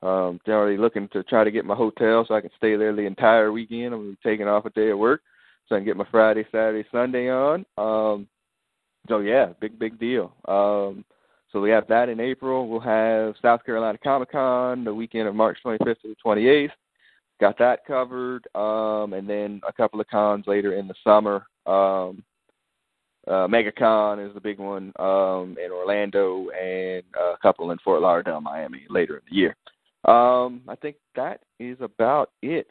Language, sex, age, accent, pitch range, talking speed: English, male, 20-39, American, 100-125 Hz, 190 wpm